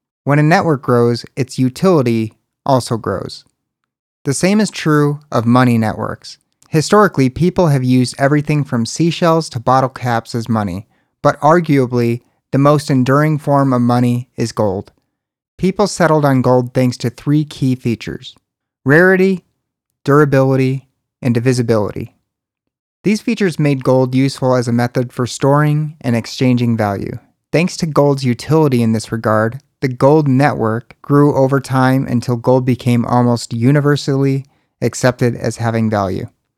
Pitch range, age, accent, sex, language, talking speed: 120-145 Hz, 30-49, American, male, English, 140 wpm